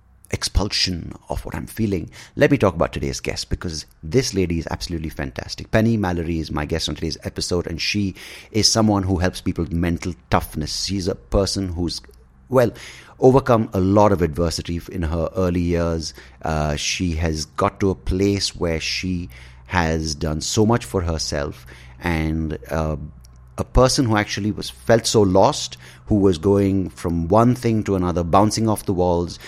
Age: 30-49